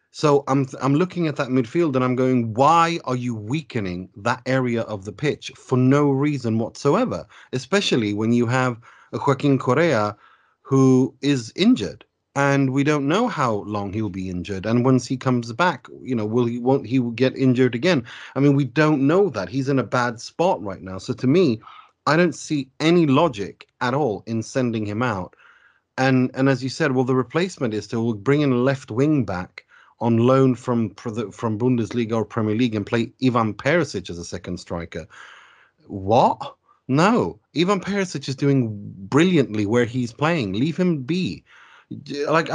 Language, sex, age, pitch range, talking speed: English, male, 30-49, 115-145 Hz, 180 wpm